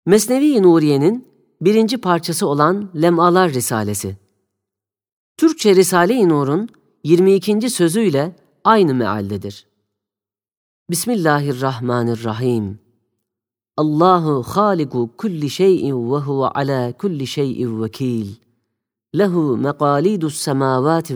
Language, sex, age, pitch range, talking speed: Turkish, female, 40-59, 120-180 Hz, 80 wpm